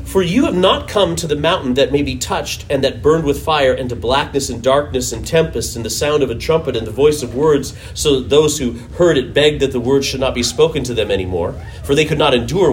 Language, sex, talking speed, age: English, male, 270 wpm, 40-59